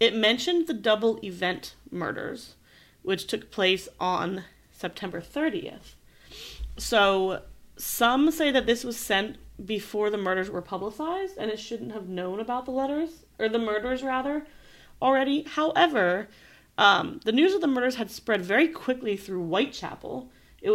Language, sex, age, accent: English, female, 30-49, American